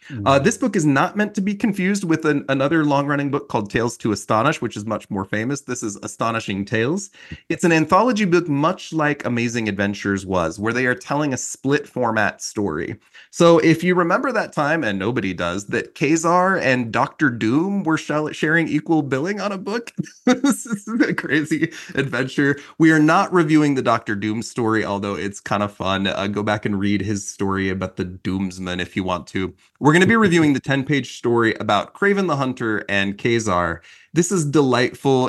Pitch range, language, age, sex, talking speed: 105-155 Hz, English, 30-49, male, 190 wpm